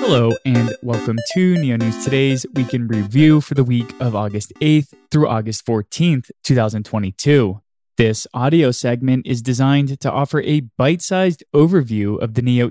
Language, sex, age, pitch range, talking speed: English, male, 20-39, 110-155 Hz, 155 wpm